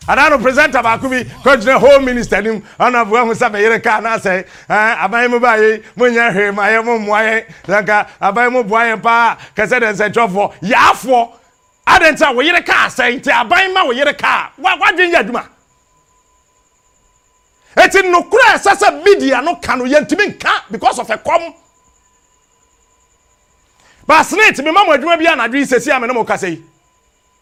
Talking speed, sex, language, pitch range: 90 wpm, male, English, 245-370 Hz